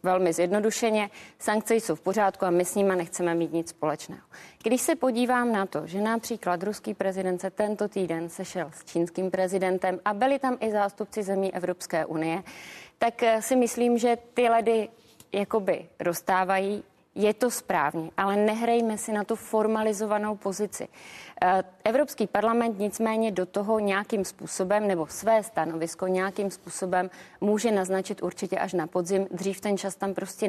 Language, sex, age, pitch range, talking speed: Czech, female, 30-49, 185-215 Hz, 155 wpm